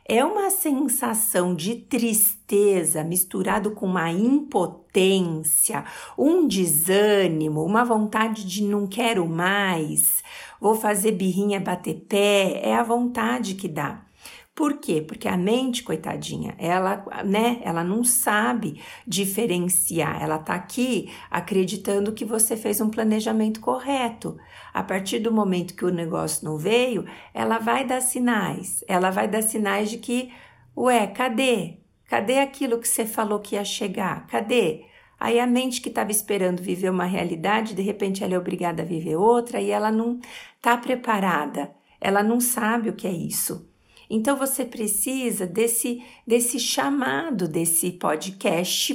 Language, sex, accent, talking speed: Portuguese, female, Brazilian, 140 wpm